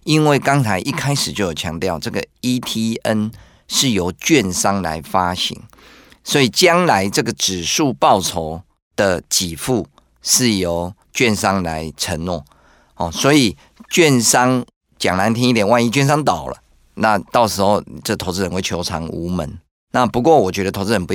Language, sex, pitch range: Chinese, male, 85-110 Hz